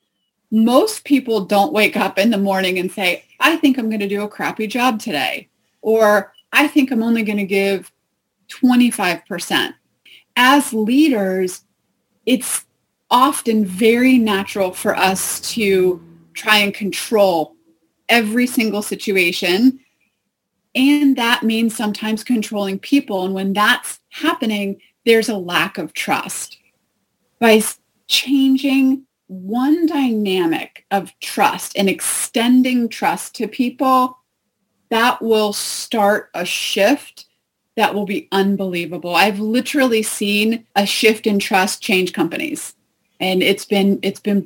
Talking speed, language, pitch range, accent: 125 wpm, English, 195-245 Hz, American